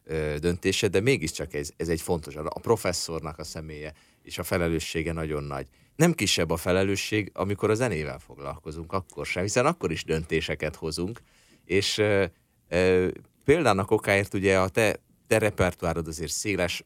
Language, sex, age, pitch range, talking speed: Hungarian, male, 30-49, 80-105 Hz, 155 wpm